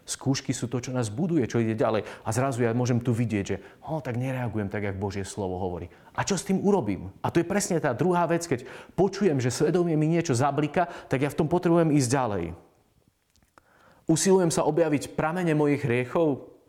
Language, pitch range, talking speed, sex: Slovak, 125-175 Hz, 200 wpm, male